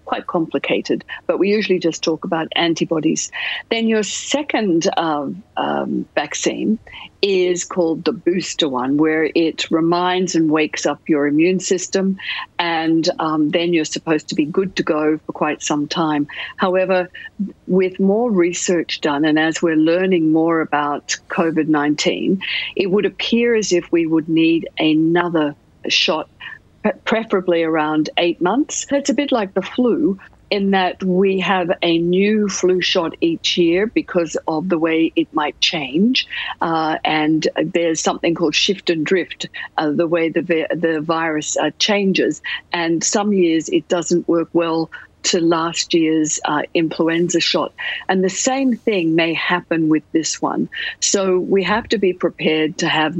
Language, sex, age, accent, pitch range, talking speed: English, female, 50-69, Australian, 160-195 Hz, 155 wpm